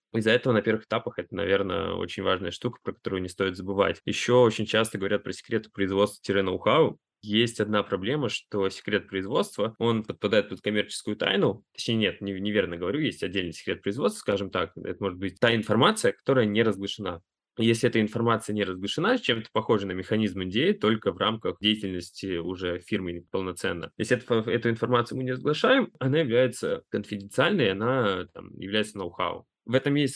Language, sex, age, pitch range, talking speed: Russian, male, 20-39, 95-115 Hz, 170 wpm